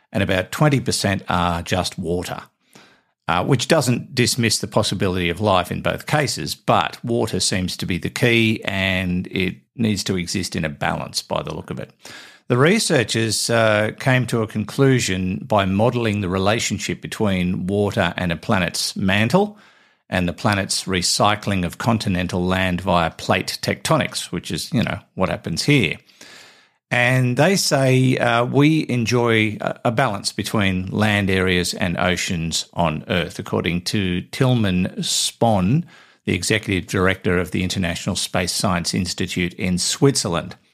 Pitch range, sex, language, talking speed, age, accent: 95-120 Hz, male, English, 150 wpm, 50-69, Australian